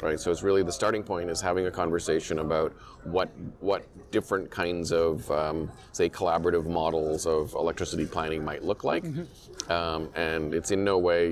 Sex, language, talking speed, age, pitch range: male, English, 175 wpm, 40-59, 80-90 Hz